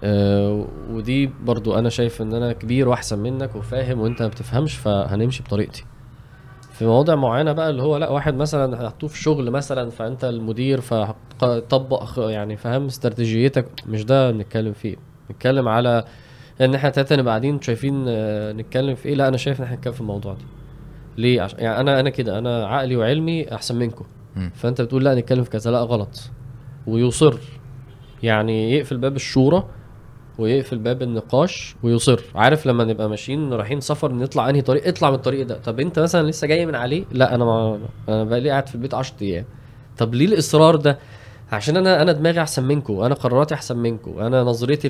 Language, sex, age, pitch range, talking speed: Arabic, male, 20-39, 115-140 Hz, 175 wpm